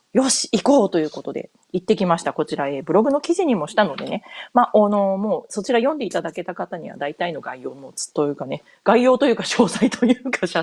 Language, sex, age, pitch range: Japanese, female, 30-49, 165-245 Hz